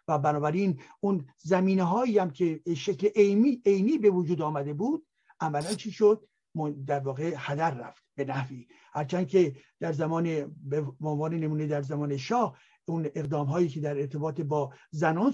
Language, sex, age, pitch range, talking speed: Persian, male, 60-79, 160-215 Hz, 150 wpm